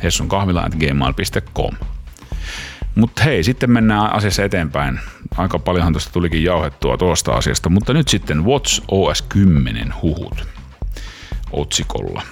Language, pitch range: Finnish, 75-90 Hz